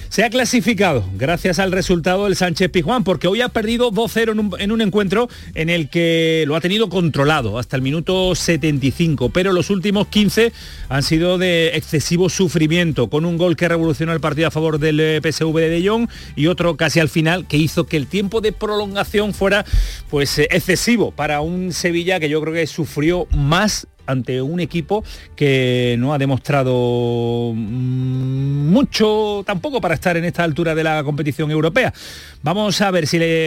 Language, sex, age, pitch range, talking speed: Spanish, male, 40-59, 140-180 Hz, 180 wpm